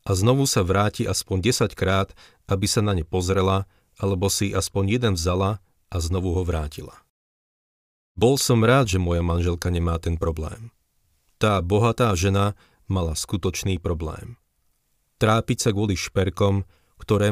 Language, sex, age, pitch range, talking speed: Slovak, male, 40-59, 85-105 Hz, 140 wpm